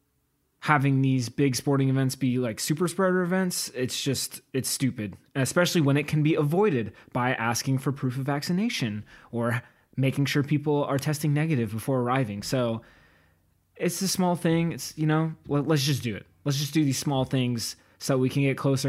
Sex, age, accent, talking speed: male, 20-39, American, 185 wpm